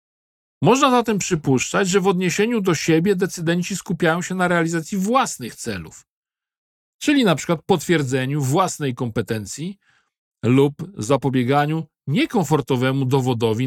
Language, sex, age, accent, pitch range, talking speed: Polish, male, 50-69, native, 135-195 Hz, 110 wpm